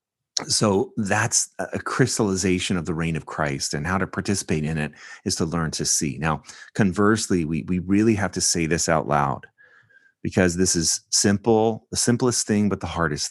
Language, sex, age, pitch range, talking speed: English, male, 30-49, 80-100 Hz, 185 wpm